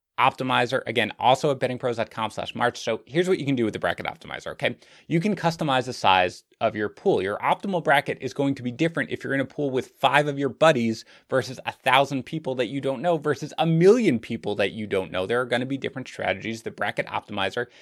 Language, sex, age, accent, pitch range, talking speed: English, male, 30-49, American, 125-155 Hz, 235 wpm